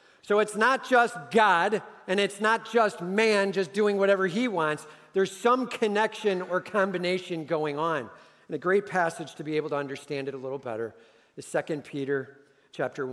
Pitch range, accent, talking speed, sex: 135-180 Hz, American, 180 wpm, male